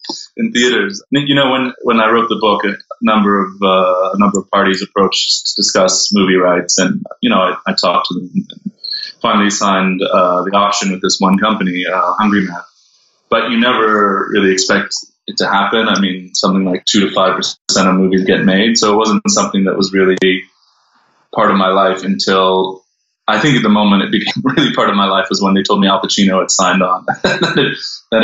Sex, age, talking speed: male, 20-39, 210 wpm